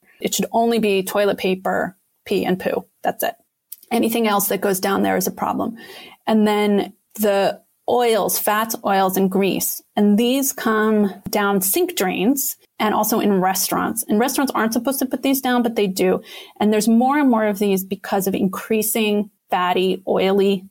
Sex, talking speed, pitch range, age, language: female, 175 wpm, 200-240 Hz, 30-49, English